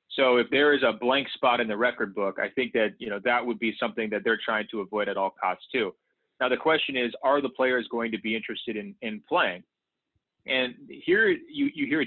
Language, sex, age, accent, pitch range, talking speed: English, male, 30-49, American, 115-135 Hz, 240 wpm